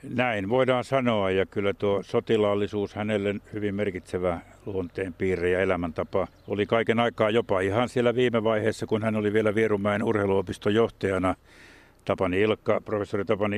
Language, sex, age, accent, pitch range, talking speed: Finnish, male, 60-79, native, 95-110 Hz, 135 wpm